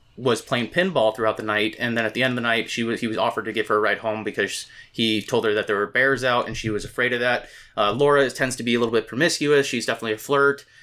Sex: male